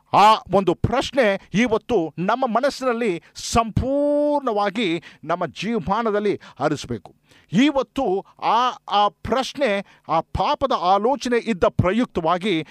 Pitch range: 170-245 Hz